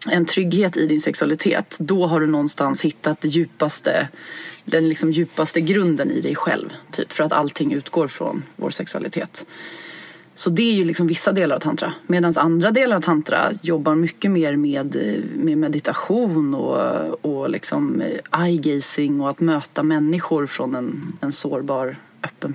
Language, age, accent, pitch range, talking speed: English, 30-49, Swedish, 155-185 Hz, 155 wpm